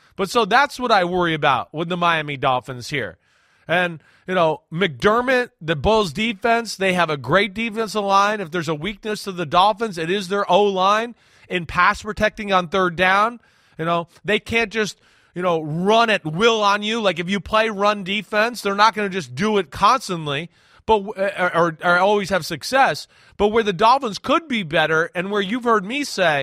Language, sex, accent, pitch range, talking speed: English, male, American, 175-225 Hz, 200 wpm